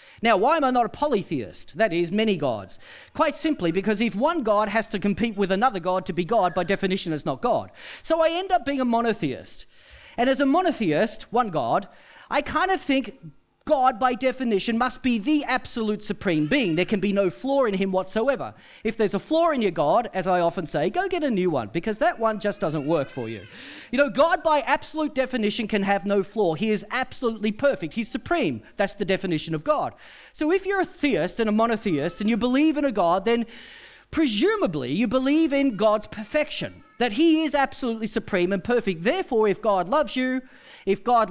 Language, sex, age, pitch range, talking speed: English, male, 40-59, 180-260 Hz, 210 wpm